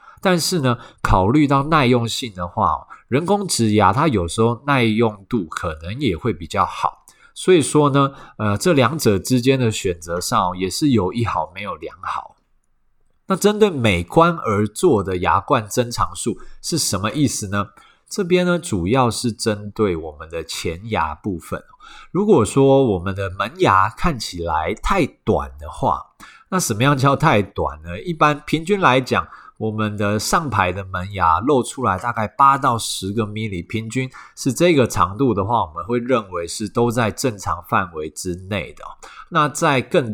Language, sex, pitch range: Chinese, male, 95-140 Hz